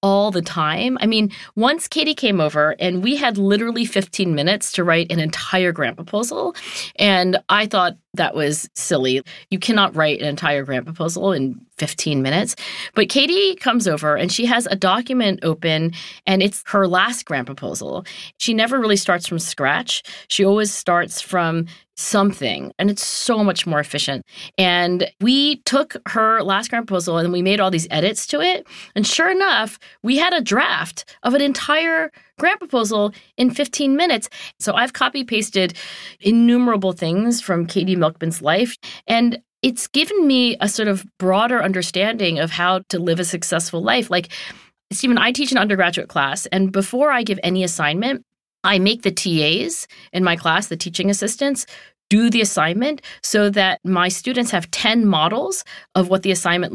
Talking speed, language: 170 wpm, English